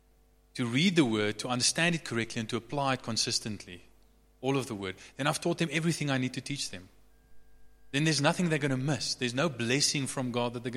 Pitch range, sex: 110-145 Hz, male